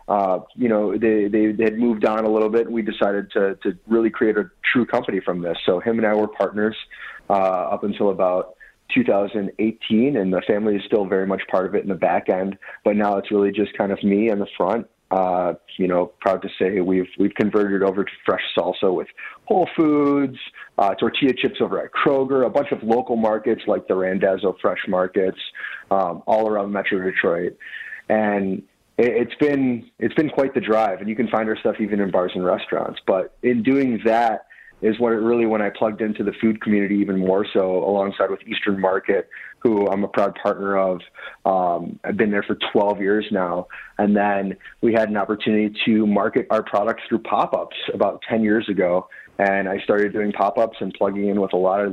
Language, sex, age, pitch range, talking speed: English, male, 30-49, 100-110 Hz, 210 wpm